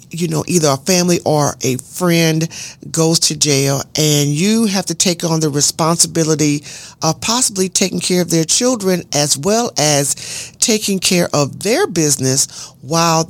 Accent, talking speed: American, 160 wpm